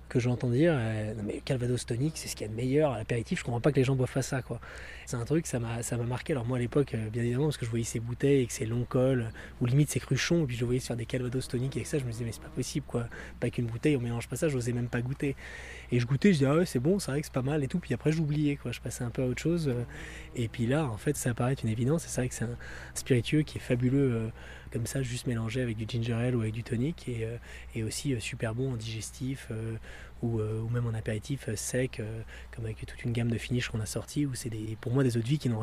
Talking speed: 300 wpm